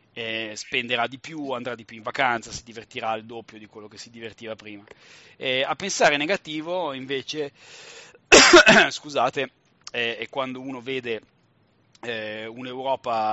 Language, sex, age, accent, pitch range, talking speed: Italian, male, 30-49, native, 110-130 Hz, 145 wpm